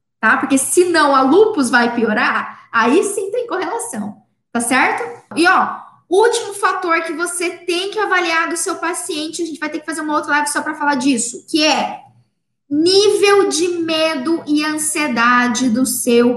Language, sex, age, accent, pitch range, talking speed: Portuguese, female, 10-29, Brazilian, 250-335 Hz, 175 wpm